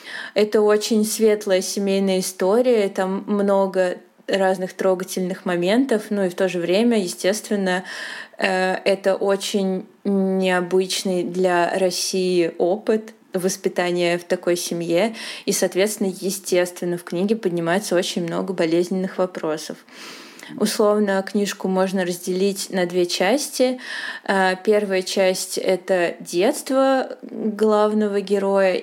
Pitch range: 185-215 Hz